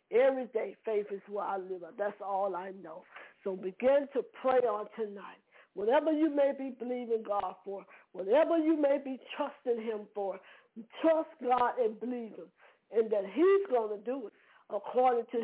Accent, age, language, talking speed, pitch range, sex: American, 50-69, English, 180 wpm, 220-290 Hz, female